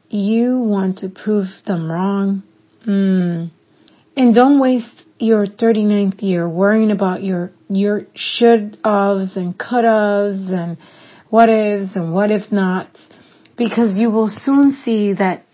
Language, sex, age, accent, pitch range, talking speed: English, female, 40-59, American, 190-225 Hz, 140 wpm